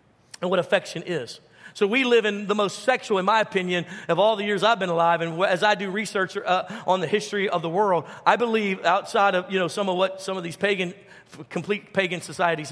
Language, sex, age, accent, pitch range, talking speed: English, male, 40-59, American, 175-205 Hz, 230 wpm